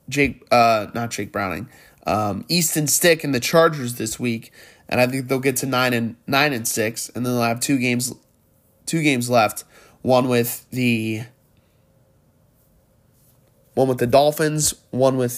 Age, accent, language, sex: 20-39, American, English, male